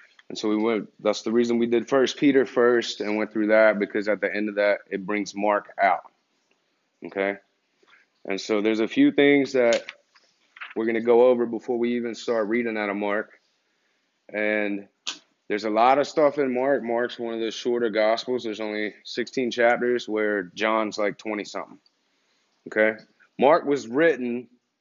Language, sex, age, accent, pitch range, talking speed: English, male, 30-49, American, 105-125 Hz, 180 wpm